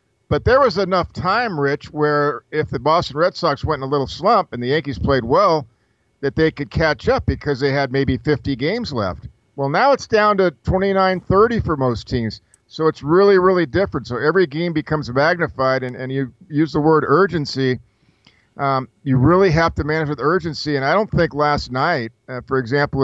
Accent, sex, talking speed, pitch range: American, male, 200 wpm, 120-150 Hz